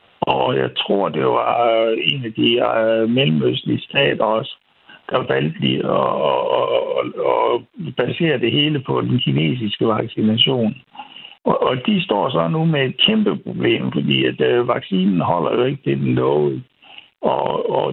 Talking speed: 155 wpm